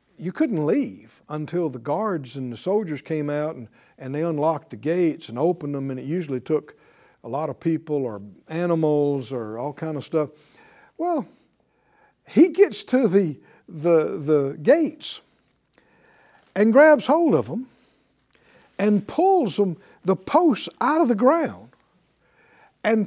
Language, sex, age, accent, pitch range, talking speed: English, male, 60-79, American, 165-265 Hz, 150 wpm